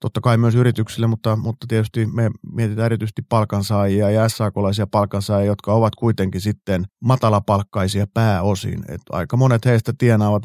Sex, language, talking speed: male, Finnish, 145 wpm